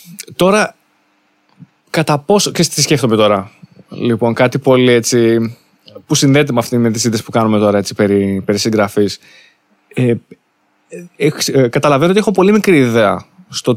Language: Greek